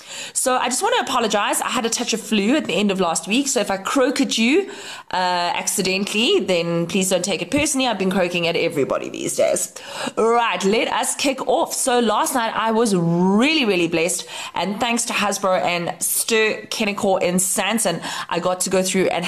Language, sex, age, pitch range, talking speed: English, female, 20-39, 180-230 Hz, 205 wpm